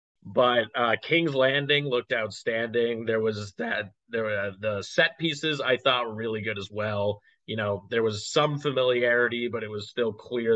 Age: 20-39